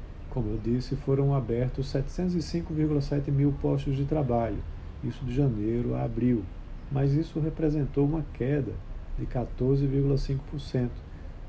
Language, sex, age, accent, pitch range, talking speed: Portuguese, male, 40-59, Brazilian, 105-140 Hz, 115 wpm